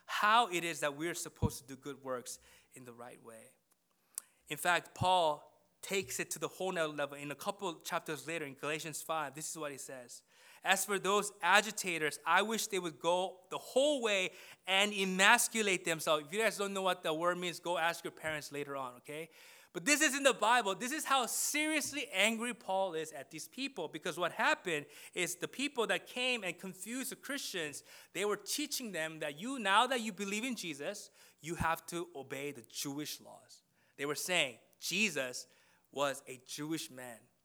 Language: English